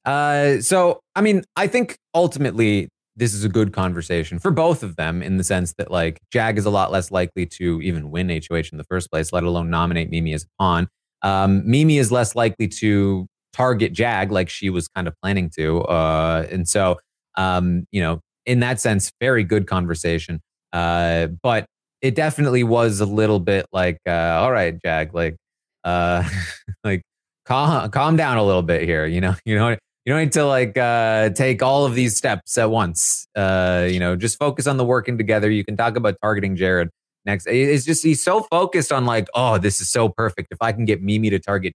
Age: 30-49